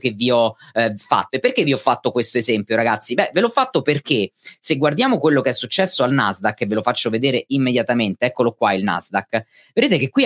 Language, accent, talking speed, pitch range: Italian, native, 230 wpm, 125-175 Hz